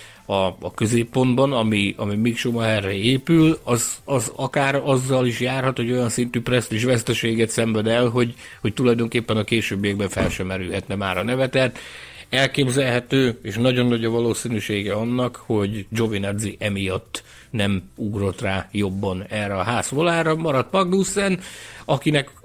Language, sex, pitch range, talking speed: Hungarian, male, 100-130 Hz, 140 wpm